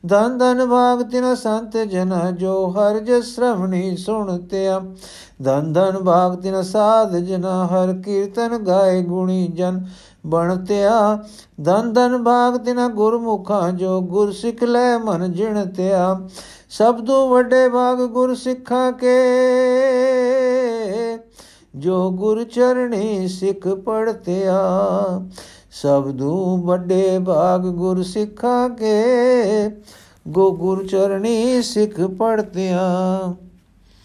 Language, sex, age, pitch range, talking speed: Punjabi, male, 50-69, 180-230 Hz, 85 wpm